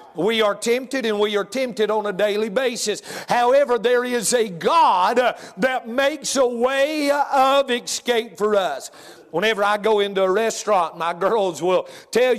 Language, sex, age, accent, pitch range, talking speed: English, male, 50-69, American, 220-265 Hz, 165 wpm